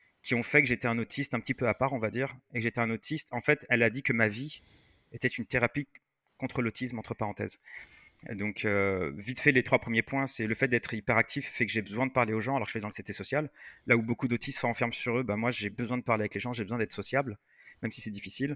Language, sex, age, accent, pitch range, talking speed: French, male, 30-49, French, 110-130 Hz, 295 wpm